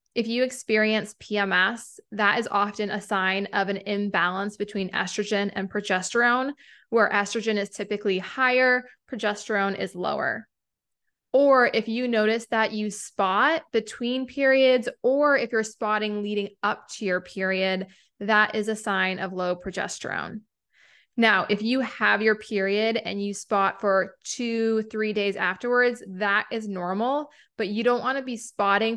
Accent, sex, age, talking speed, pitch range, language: American, female, 20-39, 150 wpm, 200-235 Hz, English